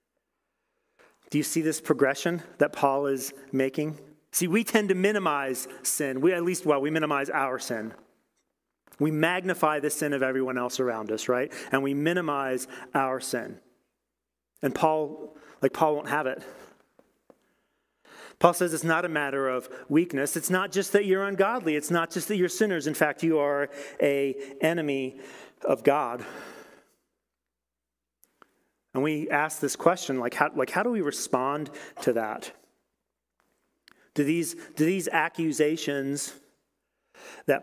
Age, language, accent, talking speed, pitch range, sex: 40-59, English, American, 150 wpm, 135-165 Hz, male